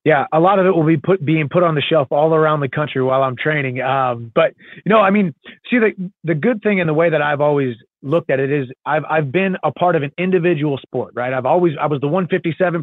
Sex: male